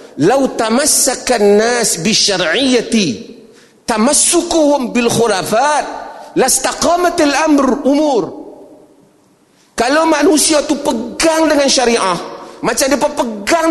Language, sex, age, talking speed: Malay, male, 40-59, 90 wpm